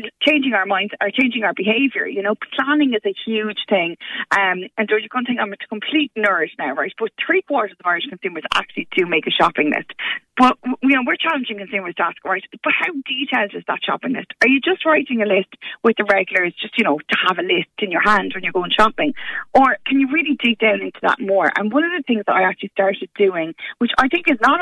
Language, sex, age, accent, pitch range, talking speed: English, female, 20-39, Irish, 195-265 Hz, 250 wpm